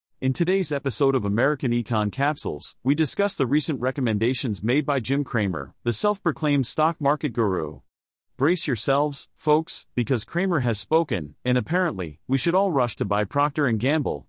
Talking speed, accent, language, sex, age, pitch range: 160 wpm, American, English, male, 40-59, 110-150 Hz